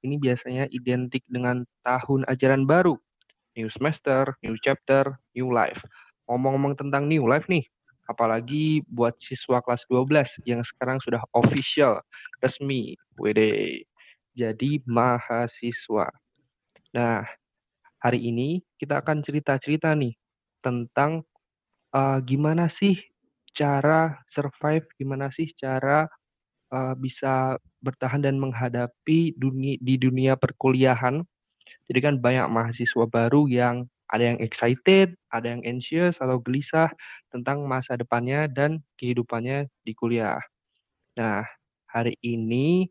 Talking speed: 110 wpm